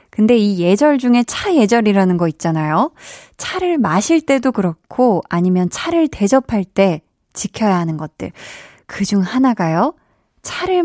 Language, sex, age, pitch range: Korean, female, 20-39, 185-270 Hz